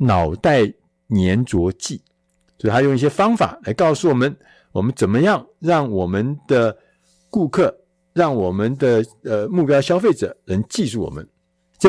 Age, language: 50-69, Chinese